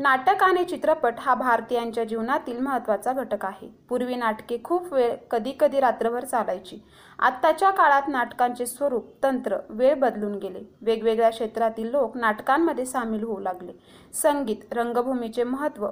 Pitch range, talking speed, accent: 230-285 Hz, 130 wpm, native